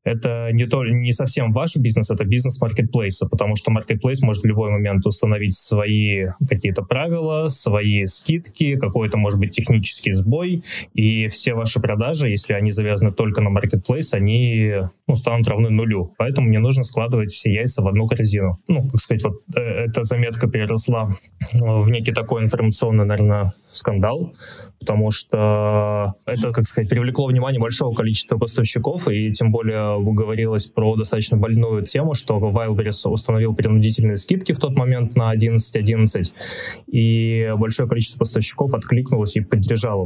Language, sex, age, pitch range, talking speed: Russian, male, 20-39, 105-120 Hz, 150 wpm